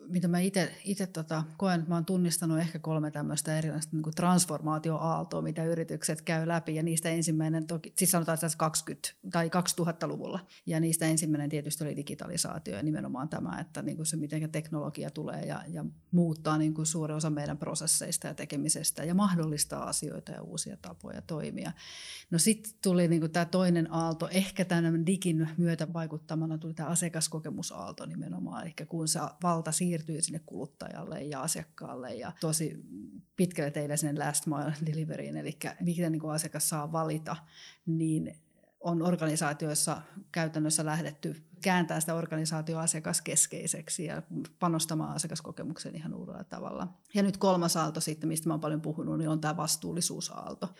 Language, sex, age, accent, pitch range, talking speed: English, female, 30-49, Finnish, 155-170 Hz, 150 wpm